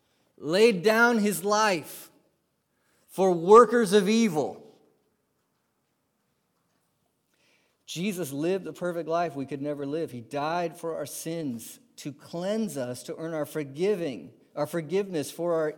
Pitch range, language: 160-250 Hz, English